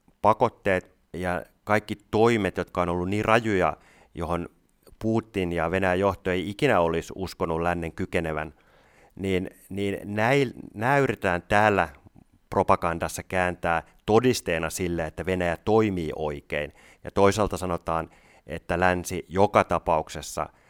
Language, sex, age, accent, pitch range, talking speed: Finnish, male, 30-49, native, 85-100 Hz, 120 wpm